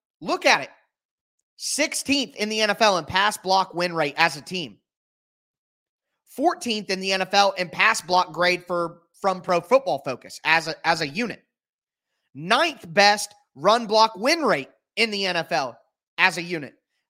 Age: 30-49